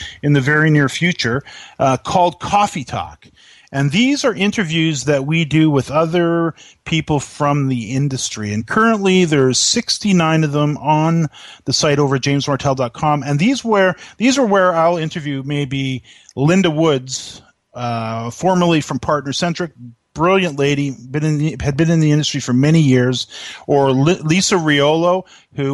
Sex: male